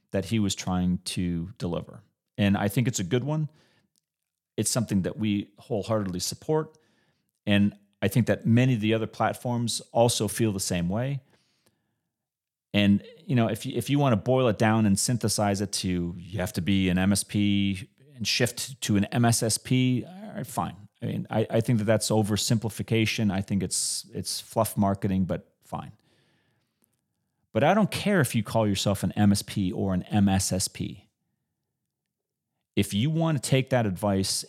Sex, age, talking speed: male, 30-49, 165 wpm